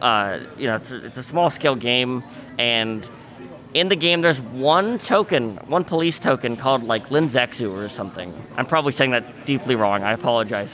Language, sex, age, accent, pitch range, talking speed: English, male, 20-39, American, 130-170 Hz, 185 wpm